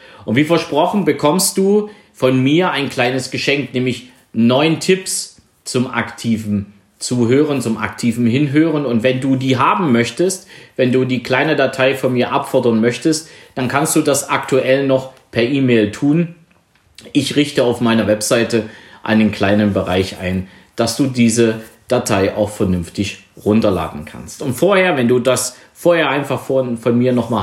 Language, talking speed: German, 155 wpm